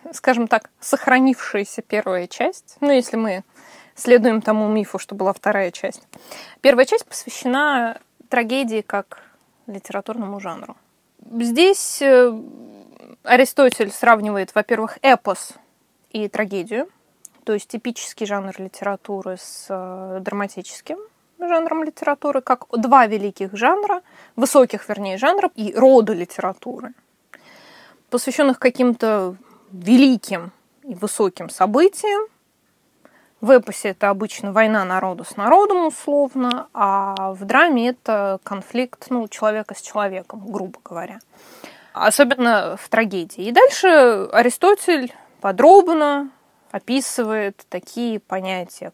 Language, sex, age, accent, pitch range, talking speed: Russian, female, 20-39, native, 200-270 Hz, 105 wpm